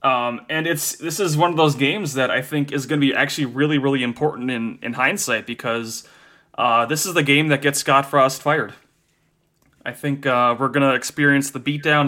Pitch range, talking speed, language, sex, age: 130-165 Hz, 215 wpm, English, male, 30-49